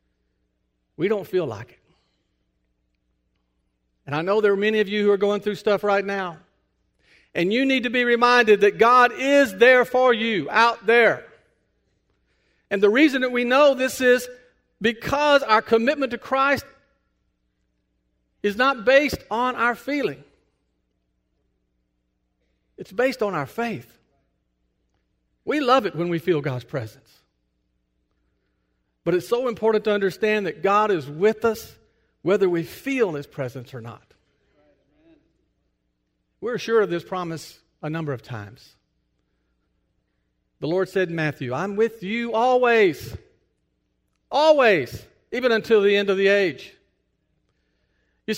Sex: male